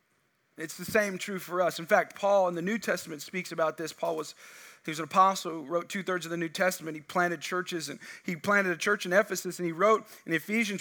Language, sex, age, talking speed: English, male, 40-59, 250 wpm